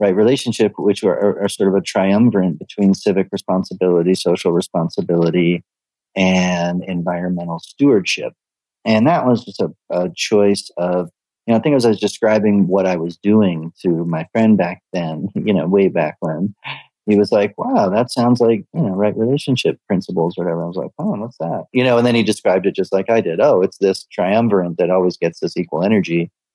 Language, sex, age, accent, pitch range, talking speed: English, male, 40-59, American, 85-100 Hz, 195 wpm